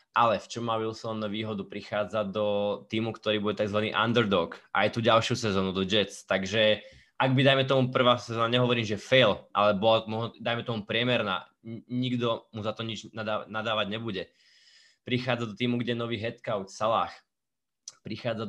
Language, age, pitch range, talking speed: Slovak, 20-39, 105-120 Hz, 160 wpm